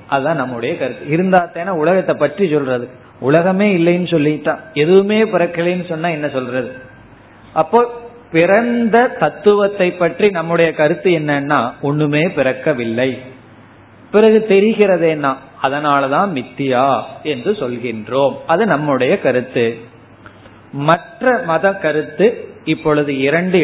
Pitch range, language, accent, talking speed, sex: 130-190 Hz, Tamil, native, 65 wpm, male